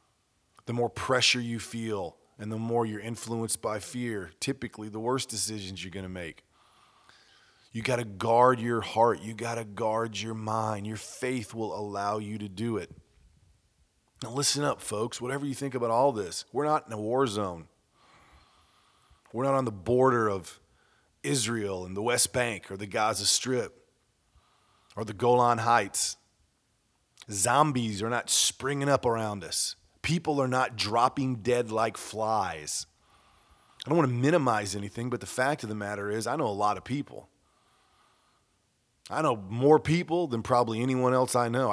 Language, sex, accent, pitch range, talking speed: English, male, American, 105-125 Hz, 170 wpm